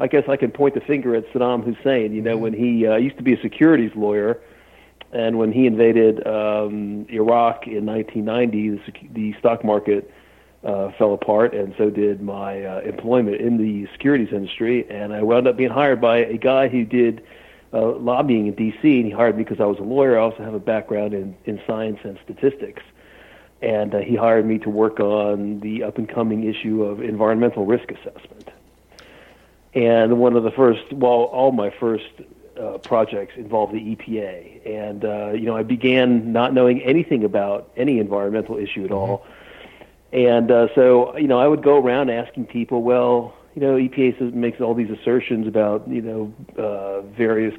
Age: 50-69